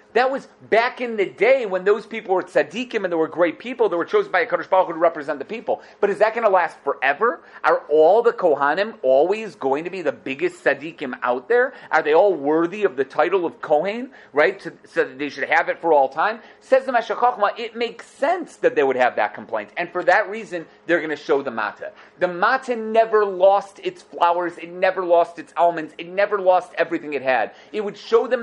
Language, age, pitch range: English, 30-49, 170-220 Hz